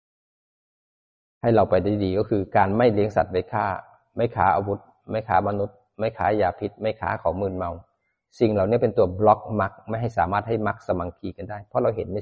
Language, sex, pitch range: Thai, male, 100-120 Hz